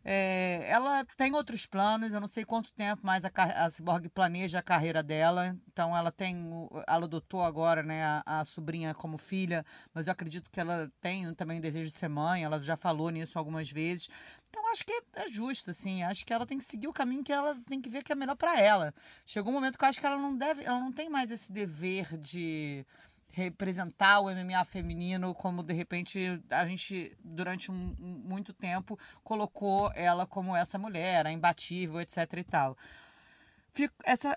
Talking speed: 200 wpm